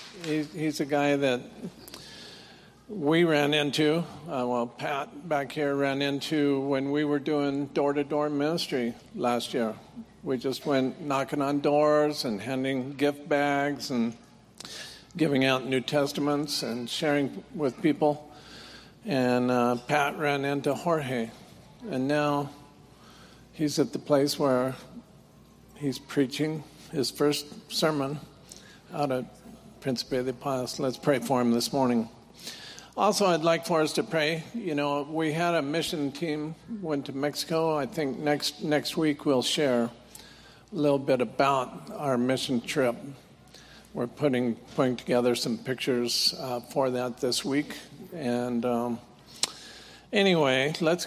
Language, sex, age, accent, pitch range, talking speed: English, male, 50-69, American, 130-150 Hz, 135 wpm